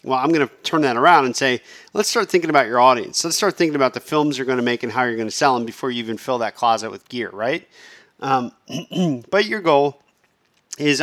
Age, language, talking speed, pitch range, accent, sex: 40-59, English, 250 wpm, 125-160 Hz, American, male